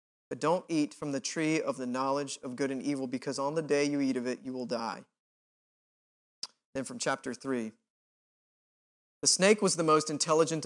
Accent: American